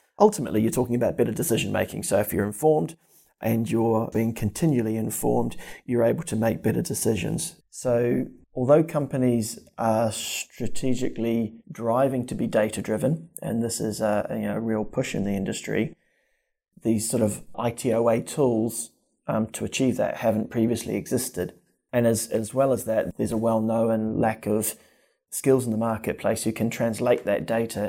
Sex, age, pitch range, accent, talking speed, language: male, 20-39, 110-125 Hz, Australian, 160 wpm, English